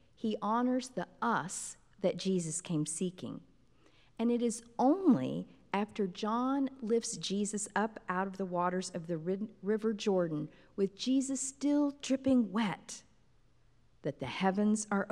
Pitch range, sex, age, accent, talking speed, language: 155-210 Hz, female, 50-69, American, 135 wpm, English